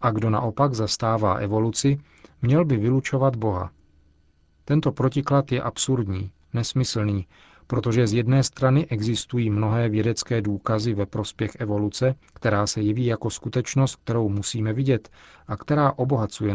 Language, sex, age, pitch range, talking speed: Czech, male, 40-59, 105-135 Hz, 130 wpm